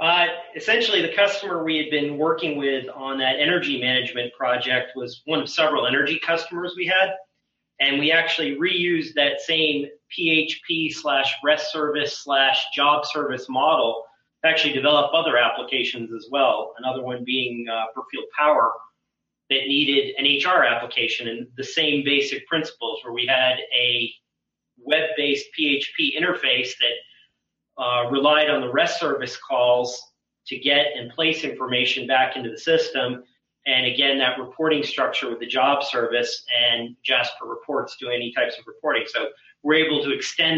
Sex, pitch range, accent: male, 130-160 Hz, American